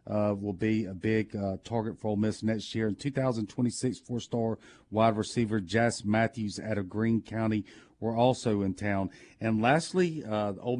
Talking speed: 180 wpm